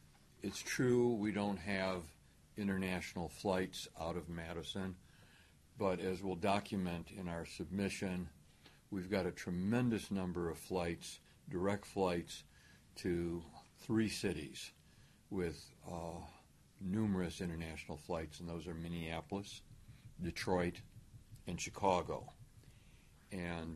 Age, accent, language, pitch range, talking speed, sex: 60-79, American, English, 85-100 Hz, 105 wpm, male